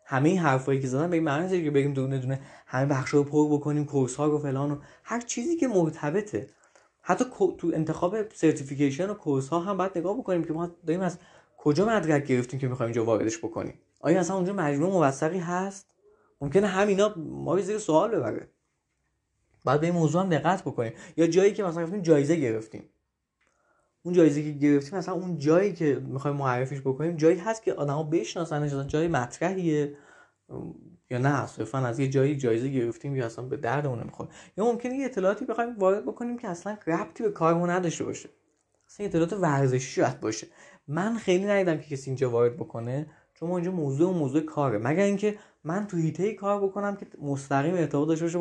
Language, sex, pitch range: Persian, male, 140-190 Hz